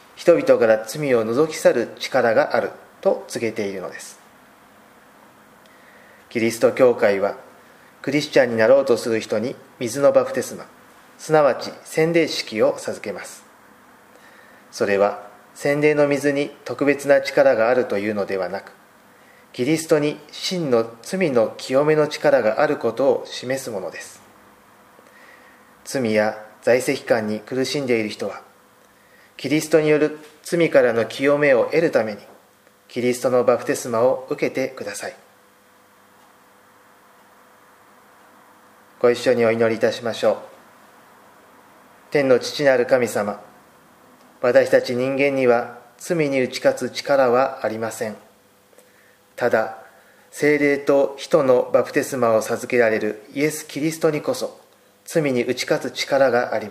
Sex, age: male, 40-59